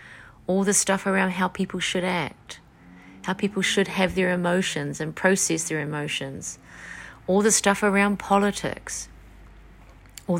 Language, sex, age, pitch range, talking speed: English, female, 30-49, 160-195 Hz, 140 wpm